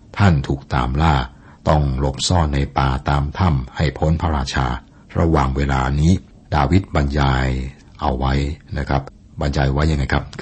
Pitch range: 70-85 Hz